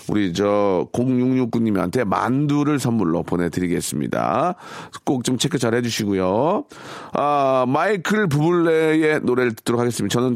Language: Korean